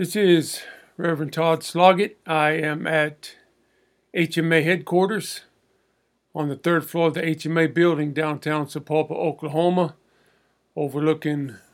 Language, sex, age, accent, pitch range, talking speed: English, male, 50-69, American, 155-175 Hz, 110 wpm